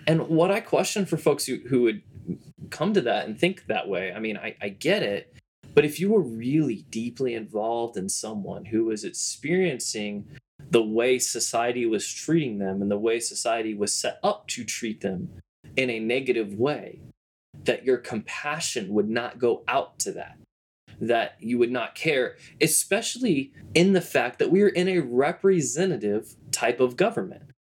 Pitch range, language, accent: 115-175 Hz, English, American